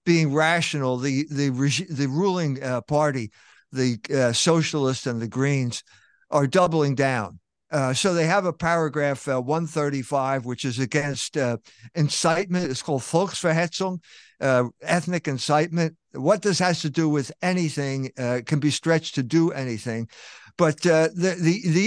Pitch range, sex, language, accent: 140-175 Hz, male, English, American